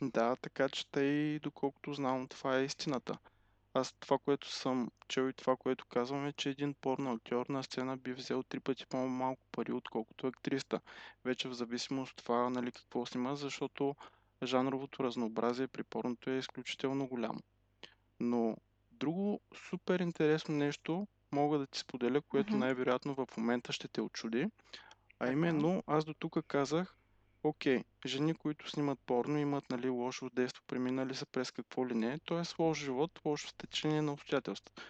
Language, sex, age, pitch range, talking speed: Bulgarian, male, 20-39, 125-150 Hz, 160 wpm